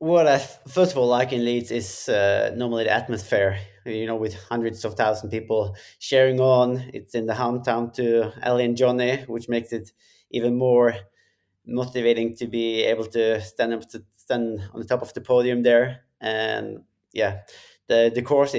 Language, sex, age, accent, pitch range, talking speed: English, male, 20-39, Norwegian, 110-125 Hz, 185 wpm